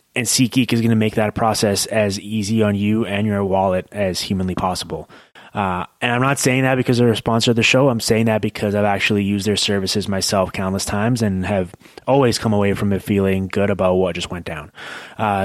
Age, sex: 20-39, male